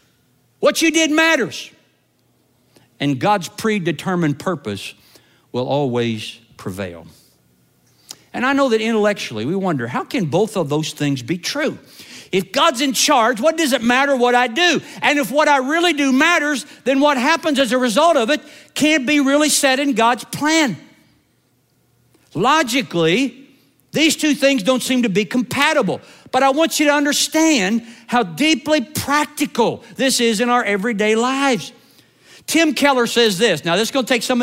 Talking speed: 165 wpm